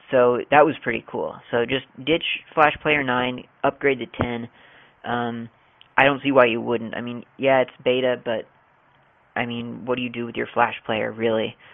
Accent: American